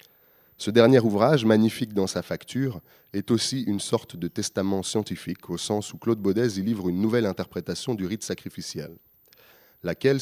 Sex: male